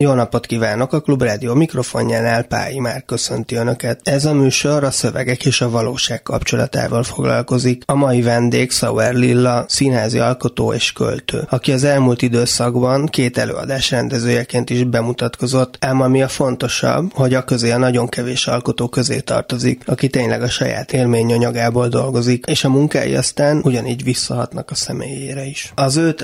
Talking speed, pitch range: 155 wpm, 120-135 Hz